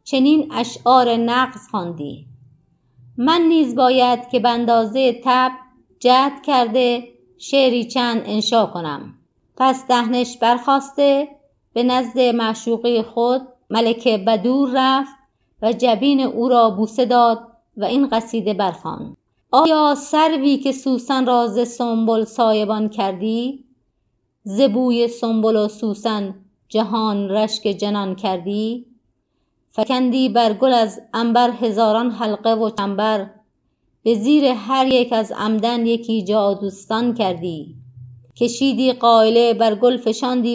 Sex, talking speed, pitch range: female, 110 wpm, 205-250 Hz